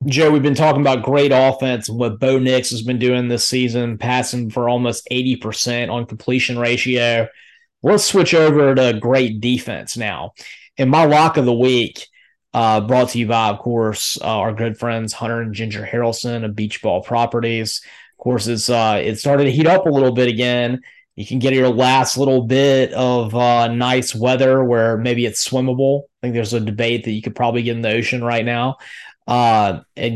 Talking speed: 195 wpm